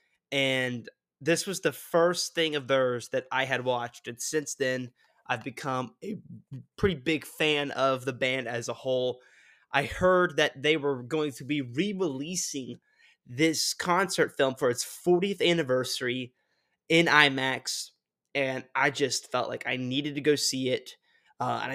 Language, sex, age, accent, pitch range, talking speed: English, male, 20-39, American, 130-170 Hz, 160 wpm